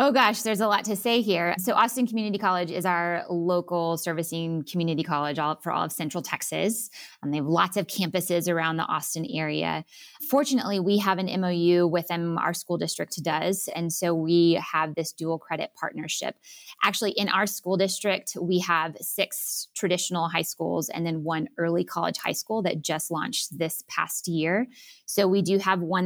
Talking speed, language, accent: 185 wpm, English, American